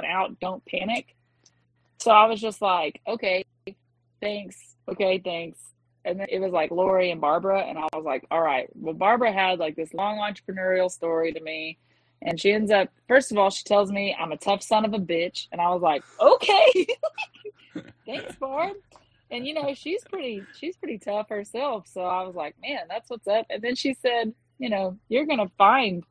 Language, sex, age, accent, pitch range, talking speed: English, female, 20-39, American, 170-220 Hz, 200 wpm